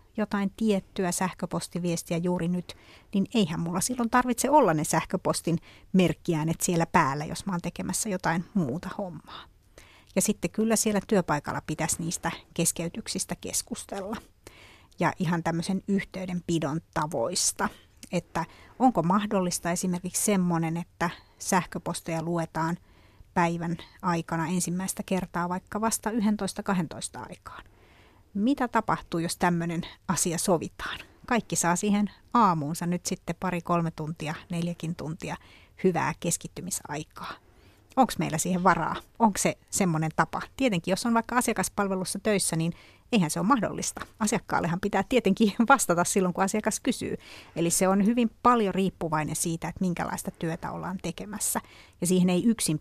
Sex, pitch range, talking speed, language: female, 170-200 Hz, 130 wpm, Finnish